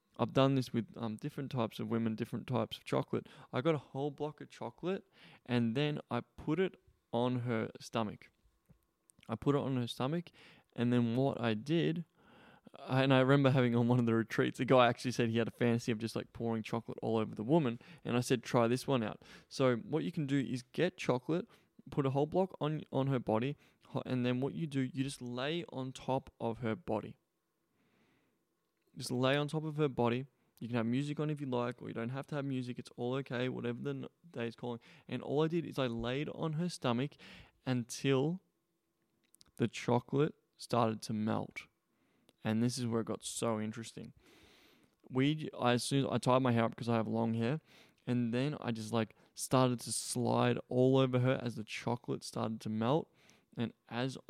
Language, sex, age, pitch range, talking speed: English, male, 20-39, 115-140 Hz, 210 wpm